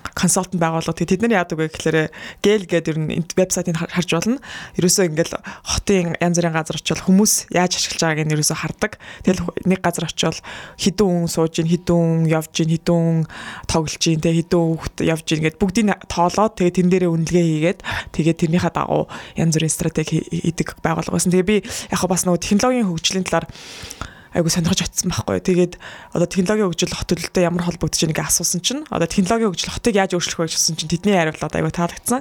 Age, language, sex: 20-39, English, female